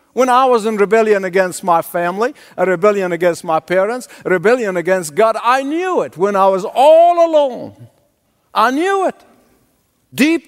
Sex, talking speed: male, 165 wpm